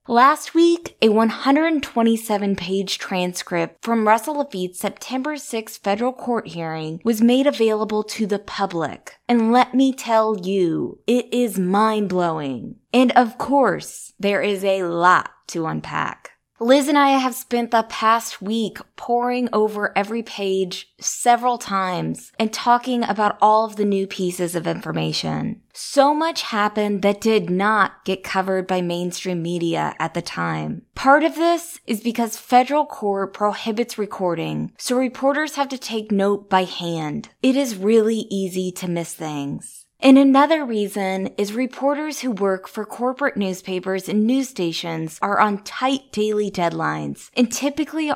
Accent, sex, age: American, female, 20-39